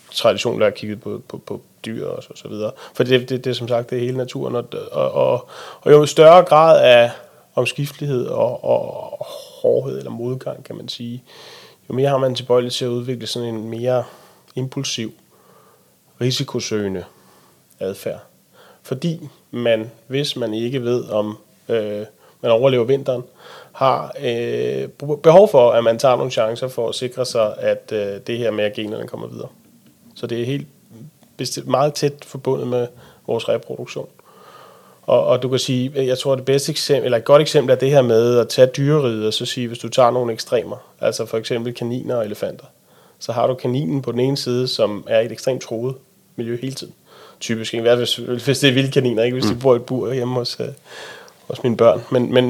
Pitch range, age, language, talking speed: 120-135 Hz, 30-49, Danish, 200 wpm